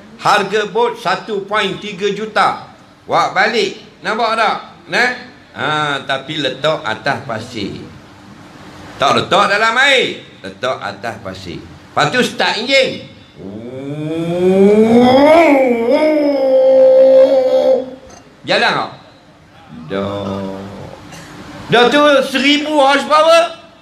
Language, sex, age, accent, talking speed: English, male, 50-69, Malaysian, 80 wpm